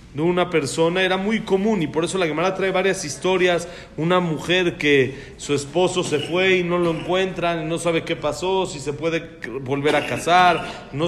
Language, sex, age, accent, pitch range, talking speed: Spanish, male, 40-59, Mexican, 145-185 Hz, 195 wpm